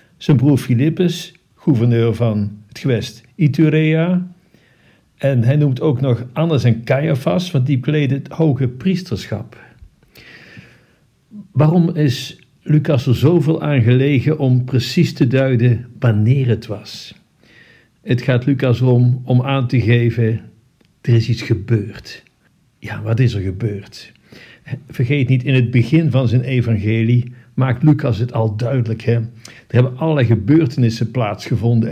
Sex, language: male, Dutch